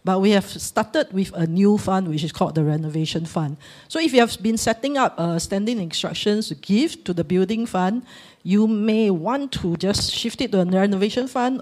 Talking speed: 210 wpm